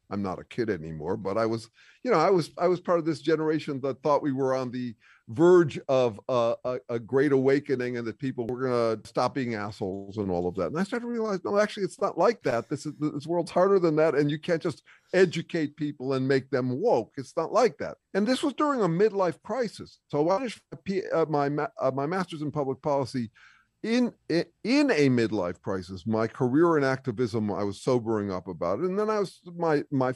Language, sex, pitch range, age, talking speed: English, male, 120-170 Hz, 50-69, 225 wpm